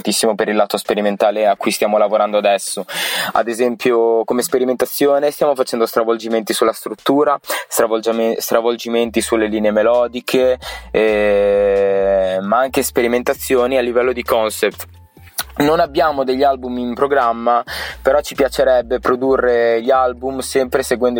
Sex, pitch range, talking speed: male, 115-130 Hz, 125 wpm